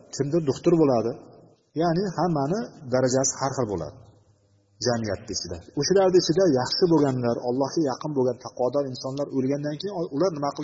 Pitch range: 110-145 Hz